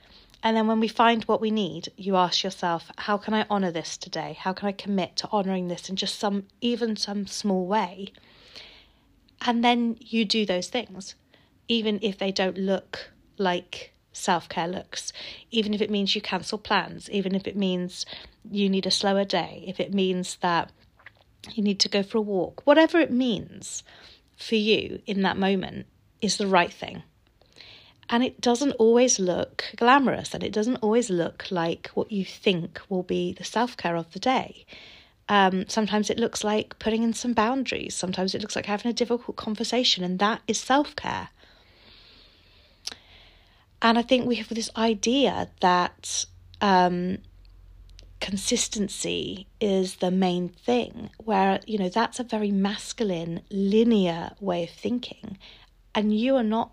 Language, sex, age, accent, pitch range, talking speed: English, female, 30-49, British, 180-225 Hz, 165 wpm